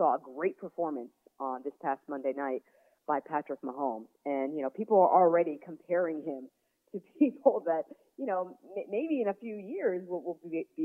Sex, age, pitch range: female, 40-59, 140-200 Hz